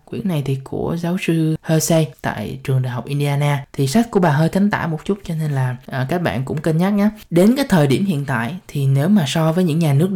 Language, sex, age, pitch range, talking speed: Vietnamese, male, 20-39, 135-185 Hz, 260 wpm